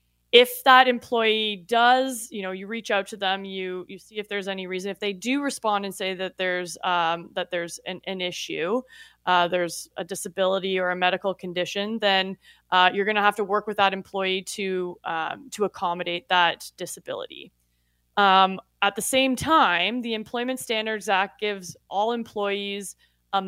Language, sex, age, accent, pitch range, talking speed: English, female, 20-39, American, 185-220 Hz, 180 wpm